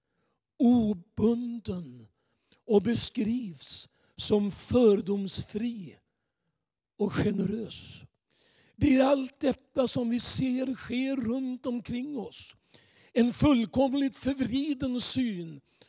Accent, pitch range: Swedish, 205-245 Hz